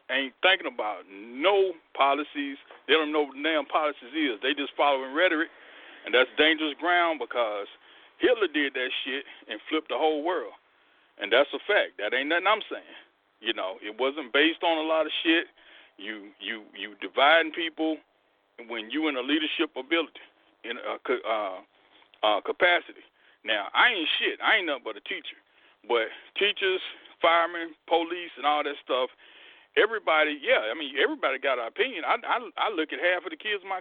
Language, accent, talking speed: English, American, 185 wpm